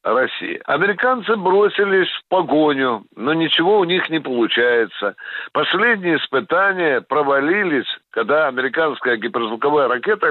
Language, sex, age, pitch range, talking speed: Russian, male, 60-79, 155-235 Hz, 100 wpm